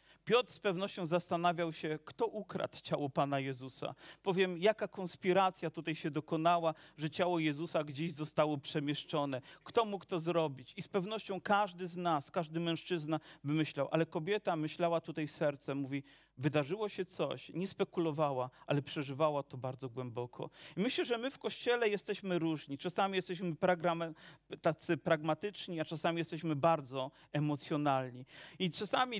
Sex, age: male, 40-59